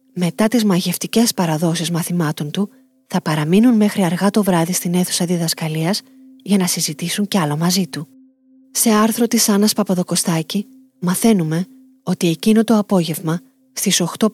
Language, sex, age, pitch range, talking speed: Greek, female, 30-49, 180-235 Hz, 140 wpm